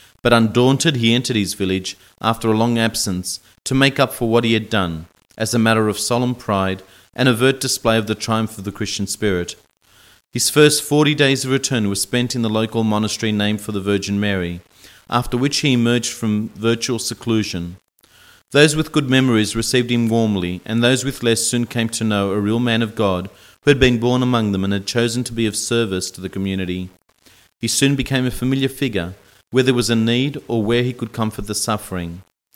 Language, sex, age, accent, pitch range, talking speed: English, male, 40-59, Australian, 100-125 Hz, 205 wpm